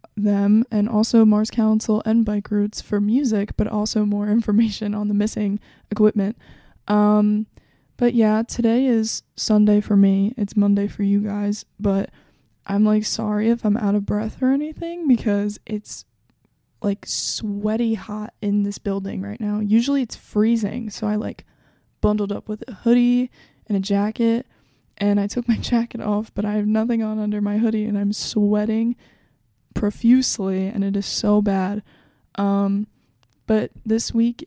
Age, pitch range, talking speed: 20-39, 205-225 Hz, 160 wpm